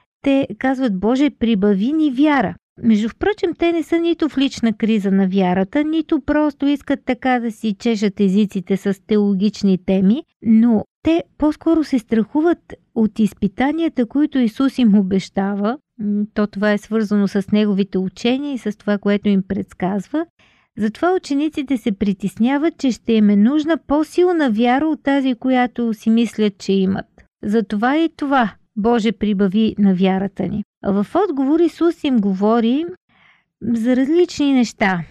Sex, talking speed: female, 150 wpm